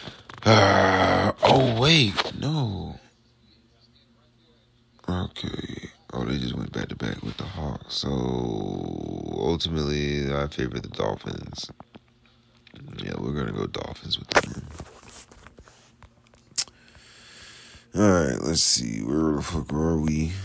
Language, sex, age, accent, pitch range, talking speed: English, male, 30-49, American, 70-110 Hz, 110 wpm